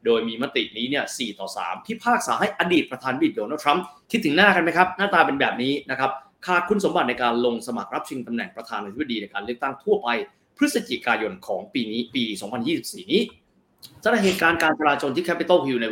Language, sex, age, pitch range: Thai, male, 30-49, 125-185 Hz